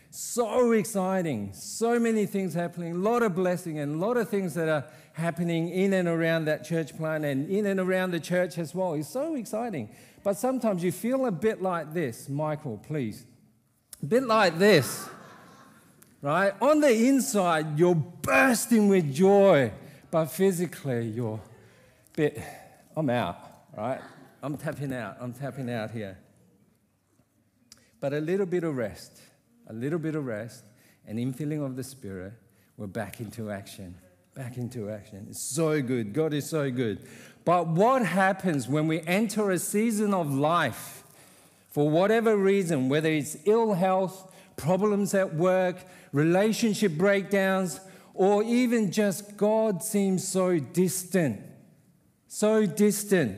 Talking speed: 150 wpm